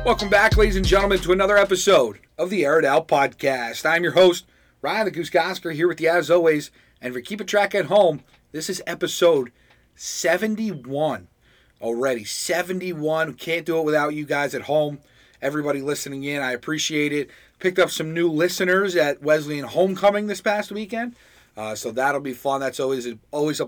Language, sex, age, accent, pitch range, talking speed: English, male, 30-49, American, 130-175 Hz, 190 wpm